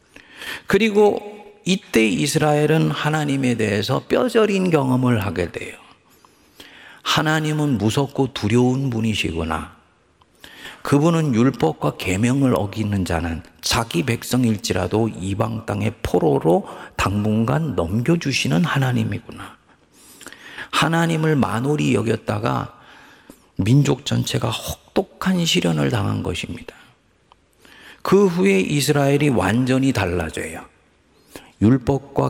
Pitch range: 100-140 Hz